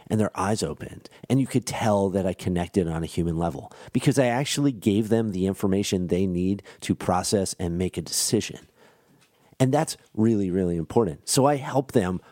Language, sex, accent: English, male, American